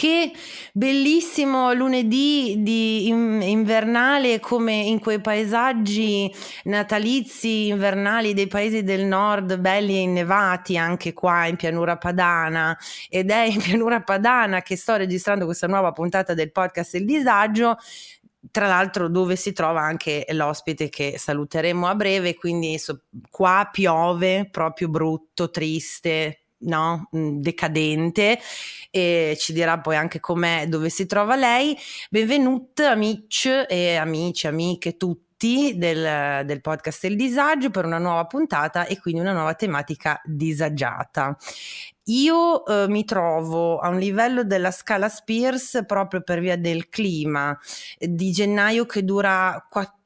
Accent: native